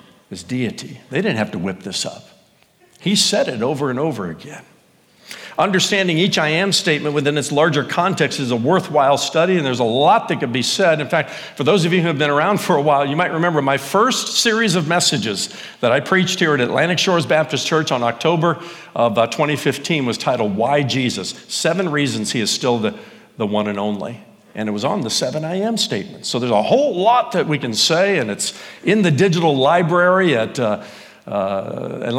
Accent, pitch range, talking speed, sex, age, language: American, 135-190 Hz, 205 wpm, male, 60-79, English